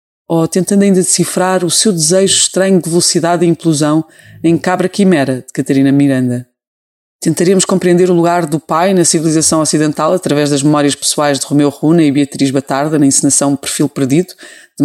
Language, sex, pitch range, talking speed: Portuguese, female, 140-180 Hz, 170 wpm